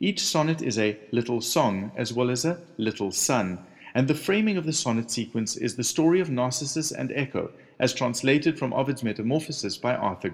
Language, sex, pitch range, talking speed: English, male, 115-155 Hz, 190 wpm